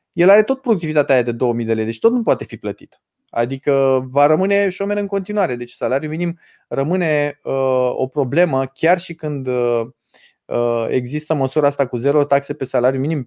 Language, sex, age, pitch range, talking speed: Romanian, male, 20-39, 125-160 Hz, 175 wpm